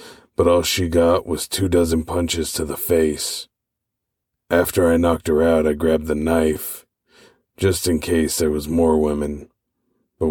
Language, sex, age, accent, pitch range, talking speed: English, male, 40-59, American, 75-85 Hz, 165 wpm